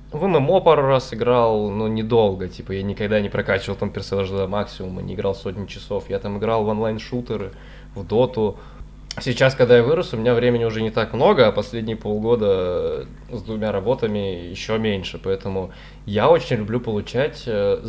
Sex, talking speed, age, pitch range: male, 170 wpm, 20-39, 100-120 Hz